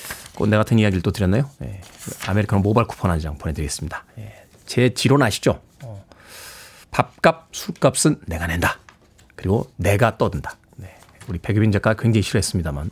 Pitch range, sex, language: 115-170 Hz, male, Korean